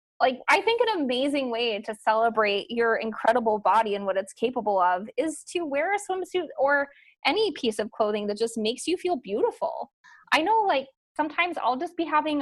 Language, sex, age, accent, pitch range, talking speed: English, female, 20-39, American, 220-290 Hz, 195 wpm